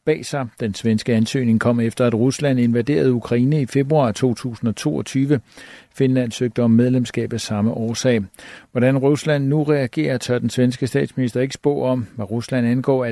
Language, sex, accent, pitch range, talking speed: Danish, male, native, 115-135 Hz, 165 wpm